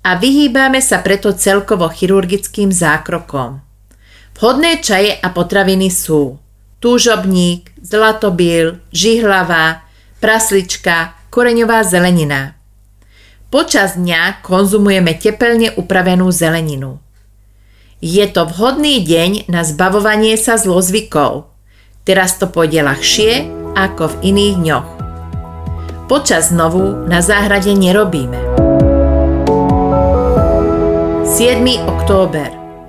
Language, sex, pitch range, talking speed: Slovak, female, 135-205 Hz, 85 wpm